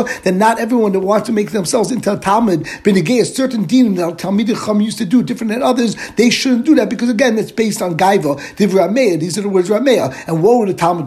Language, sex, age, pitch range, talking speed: English, male, 60-79, 190-230 Hz, 240 wpm